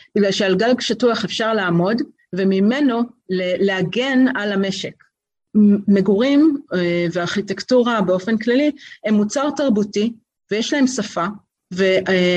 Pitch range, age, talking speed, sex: 185-245 Hz, 40-59, 115 wpm, female